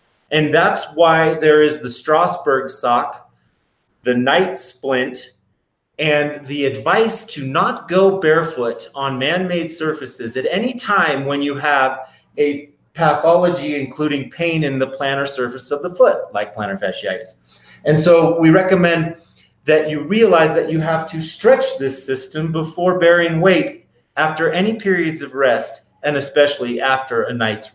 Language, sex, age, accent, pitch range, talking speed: English, male, 30-49, American, 135-165 Hz, 145 wpm